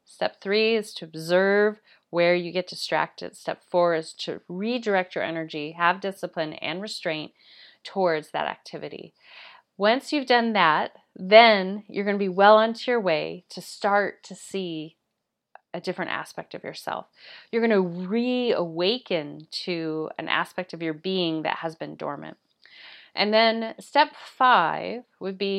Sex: female